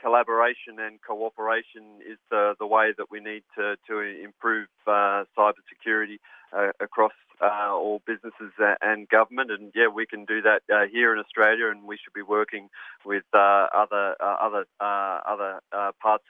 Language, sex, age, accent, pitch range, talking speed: English, male, 30-49, Australian, 100-110 Hz, 170 wpm